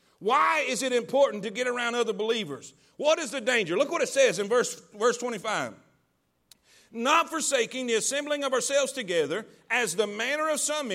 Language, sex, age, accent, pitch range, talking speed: English, male, 50-69, American, 235-300 Hz, 180 wpm